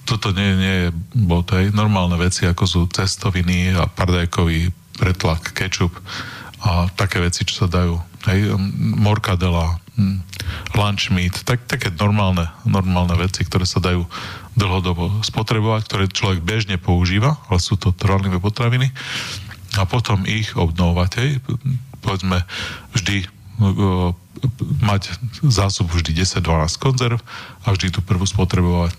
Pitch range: 90-110 Hz